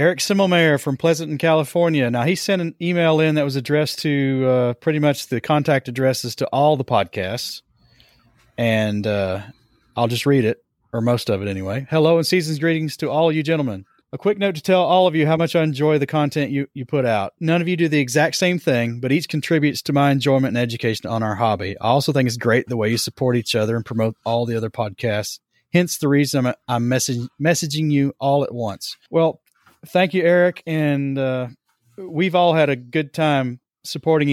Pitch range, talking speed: 115-155 Hz, 215 wpm